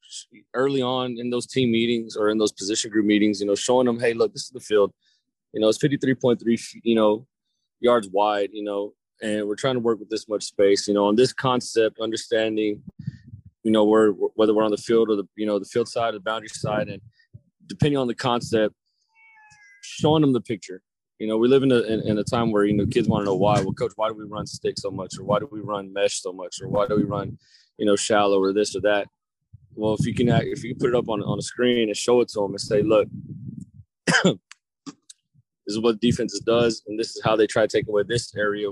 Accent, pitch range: American, 105-125 Hz